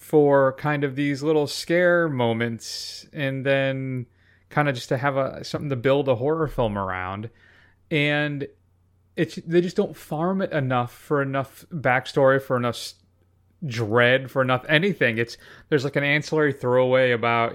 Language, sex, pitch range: English, male, 115-155 Hz